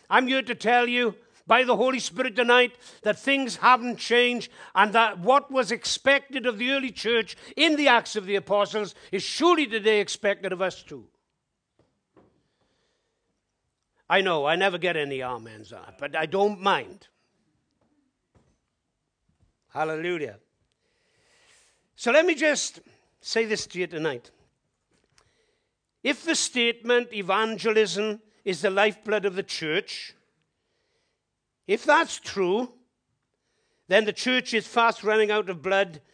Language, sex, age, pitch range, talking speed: English, male, 60-79, 190-250 Hz, 130 wpm